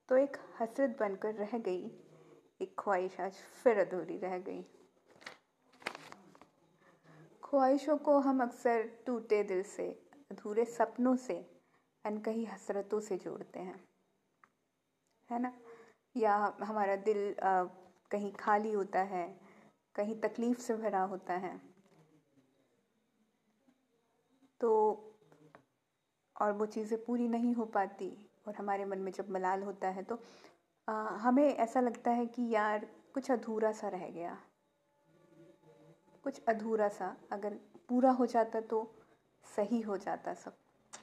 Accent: native